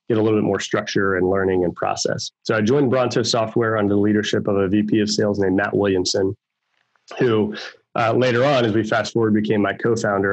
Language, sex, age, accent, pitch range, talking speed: English, male, 30-49, American, 100-115 Hz, 215 wpm